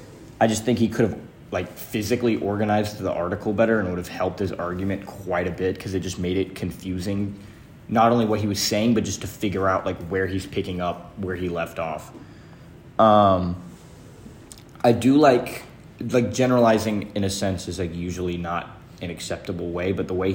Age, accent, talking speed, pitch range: 20-39, American, 195 wpm, 90-115 Hz